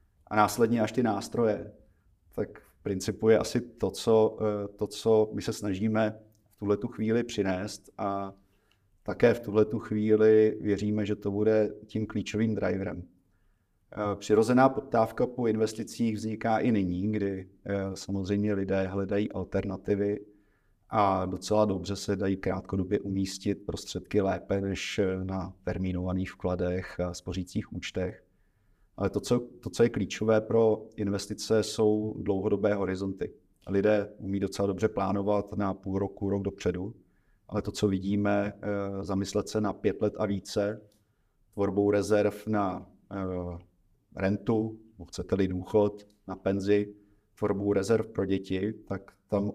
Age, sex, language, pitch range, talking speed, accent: 30-49, male, Czech, 95-110 Hz, 130 wpm, native